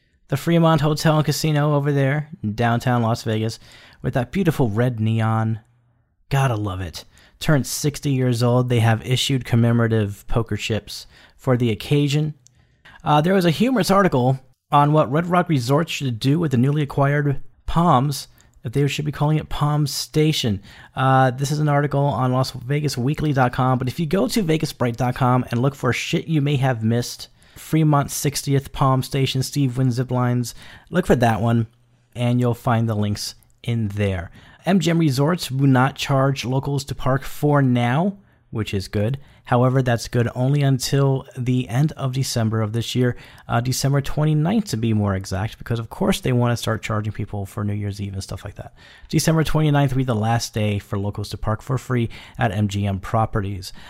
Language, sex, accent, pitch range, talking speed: English, male, American, 115-145 Hz, 180 wpm